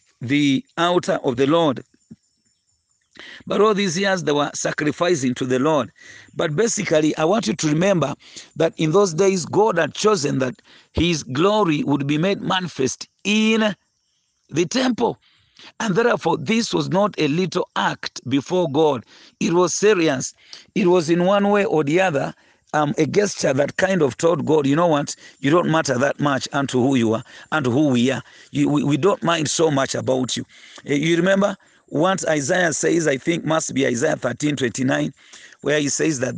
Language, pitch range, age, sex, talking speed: English, 145-185 Hz, 50-69, male, 180 wpm